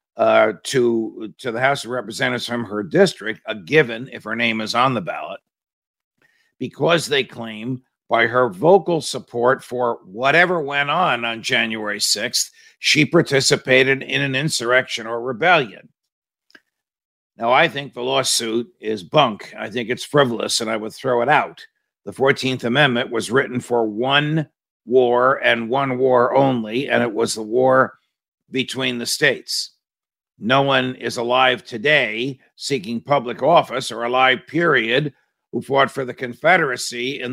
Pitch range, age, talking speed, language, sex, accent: 120-135 Hz, 50-69, 150 wpm, English, male, American